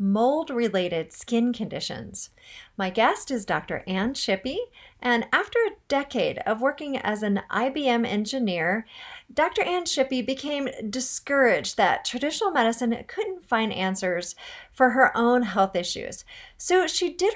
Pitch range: 205-280 Hz